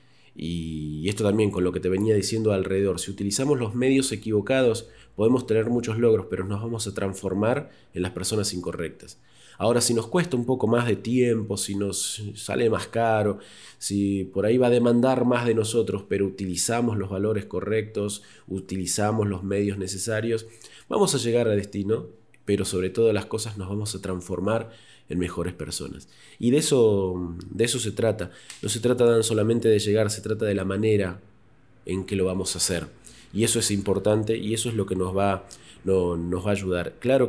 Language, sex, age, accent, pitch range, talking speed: Spanish, male, 20-39, Argentinian, 95-115 Hz, 190 wpm